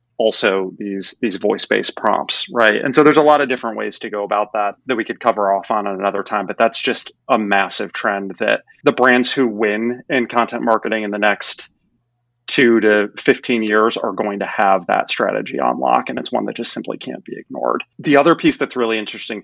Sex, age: male, 30-49